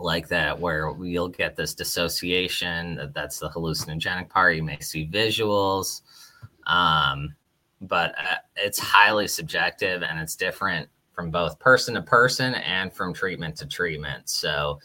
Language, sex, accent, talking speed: English, male, American, 135 wpm